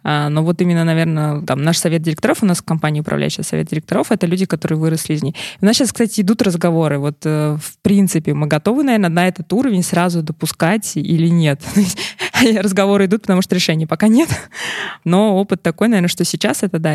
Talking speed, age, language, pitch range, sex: 200 wpm, 20-39, Russian, 160-200 Hz, female